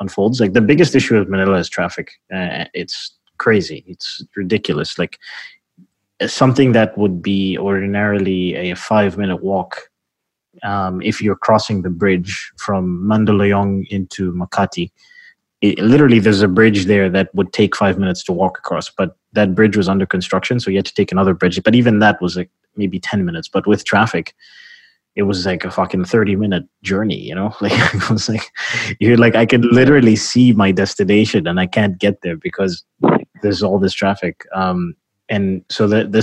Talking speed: 180 wpm